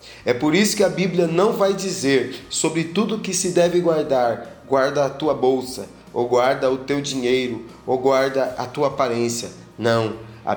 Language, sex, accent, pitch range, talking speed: English, male, Brazilian, 130-155 Hz, 175 wpm